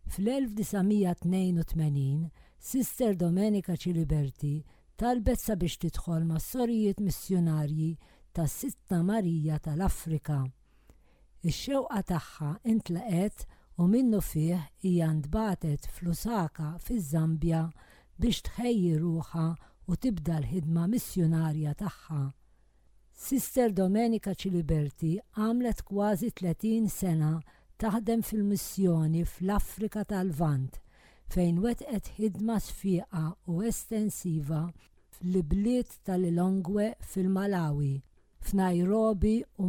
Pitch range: 160-210 Hz